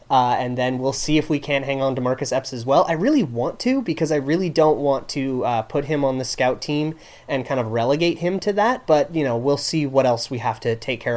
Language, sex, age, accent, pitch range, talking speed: English, male, 30-49, American, 125-170 Hz, 280 wpm